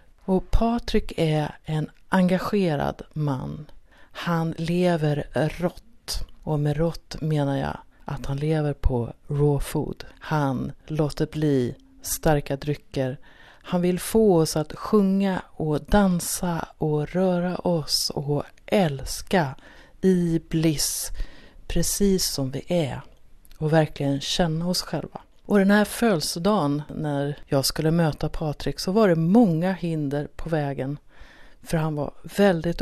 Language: Swedish